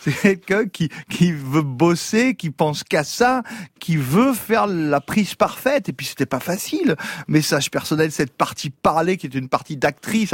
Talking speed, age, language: 190 wpm, 40-59, French